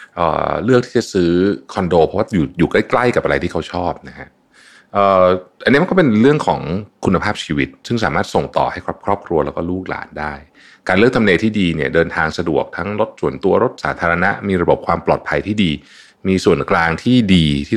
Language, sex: Thai, male